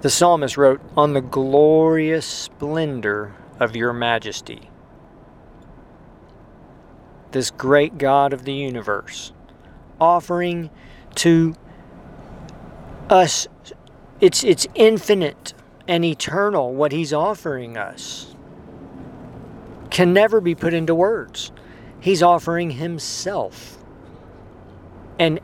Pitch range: 130-170 Hz